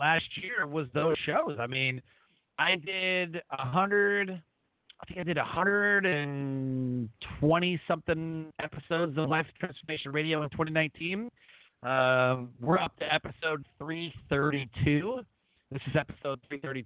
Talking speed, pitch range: 140 wpm, 125-175 Hz